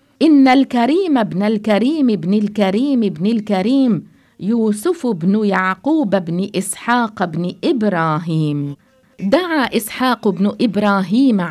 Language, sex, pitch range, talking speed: English, female, 185-240 Hz, 100 wpm